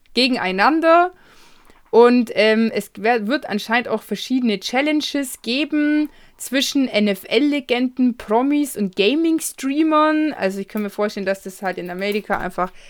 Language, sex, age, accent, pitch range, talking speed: German, female, 20-39, German, 205-255 Hz, 120 wpm